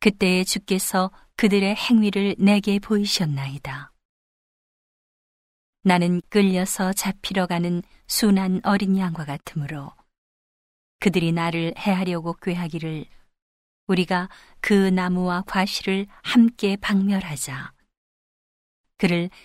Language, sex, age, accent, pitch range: Korean, female, 40-59, native, 165-195 Hz